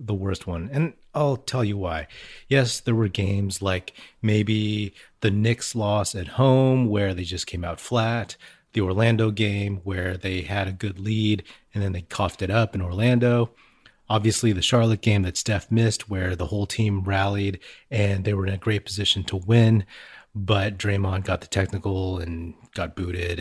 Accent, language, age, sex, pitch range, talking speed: American, English, 30-49, male, 95-115 Hz, 180 wpm